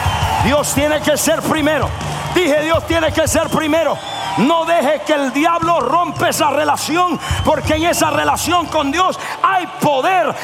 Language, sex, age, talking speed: Spanish, male, 60-79, 155 wpm